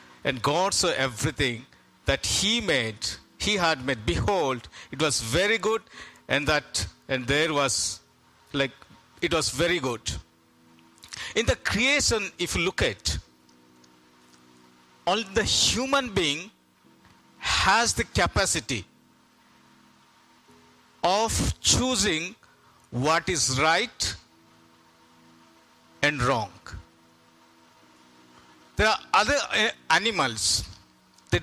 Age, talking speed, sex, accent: 60-79, 100 wpm, male, native